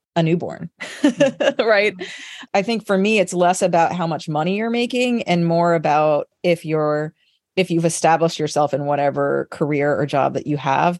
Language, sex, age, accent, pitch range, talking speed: English, female, 30-49, American, 145-180 Hz, 175 wpm